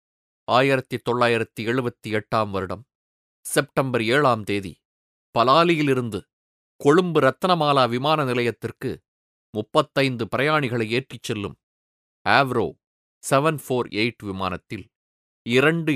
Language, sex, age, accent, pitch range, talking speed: Tamil, male, 30-49, native, 100-145 Hz, 70 wpm